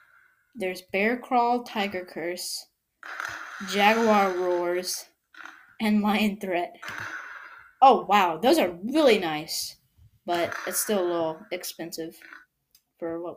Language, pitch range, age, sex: English, 170-225 Hz, 20-39, female